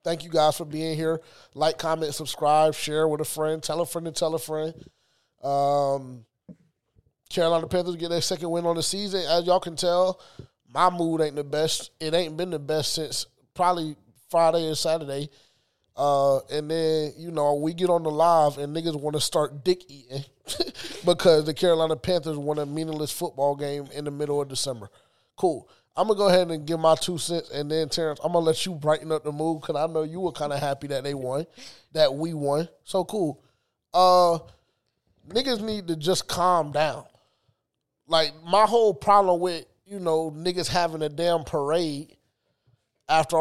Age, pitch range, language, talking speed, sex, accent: 20-39, 150-175 Hz, English, 190 wpm, male, American